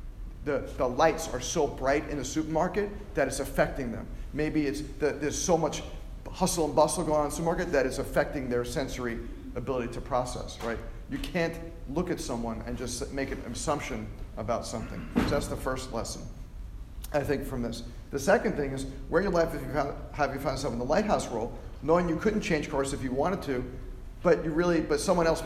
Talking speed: 210 wpm